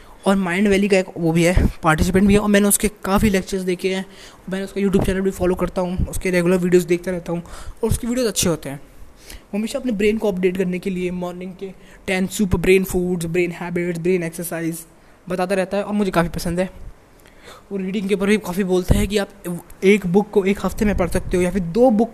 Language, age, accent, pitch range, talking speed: Hindi, 20-39, native, 175-210 Hz, 240 wpm